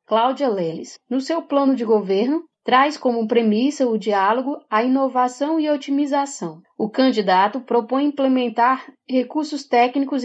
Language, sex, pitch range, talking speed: Portuguese, female, 225-280 Hz, 135 wpm